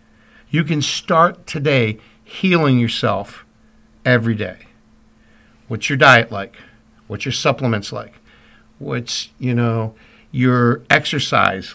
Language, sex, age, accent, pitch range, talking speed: English, male, 60-79, American, 115-140 Hz, 105 wpm